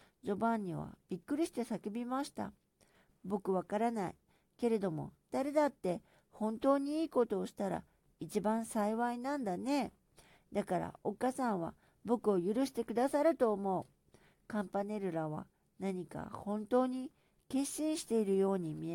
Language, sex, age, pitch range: Japanese, female, 60-79, 185-240 Hz